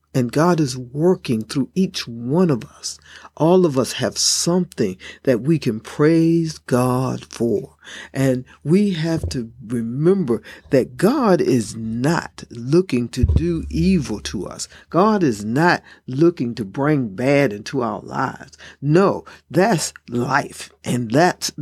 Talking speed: 140 wpm